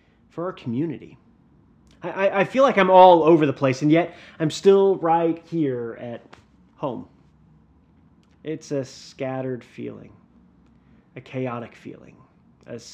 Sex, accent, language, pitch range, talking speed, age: male, American, English, 120-170 Hz, 135 wpm, 30-49